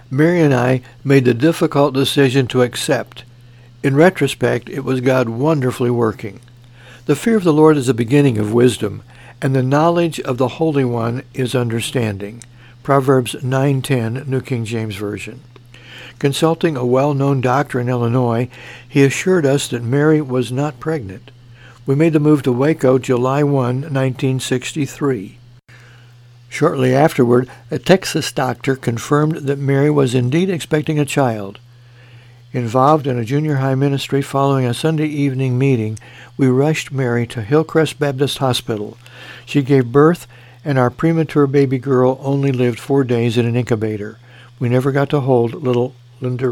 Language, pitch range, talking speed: English, 120-140 Hz, 150 wpm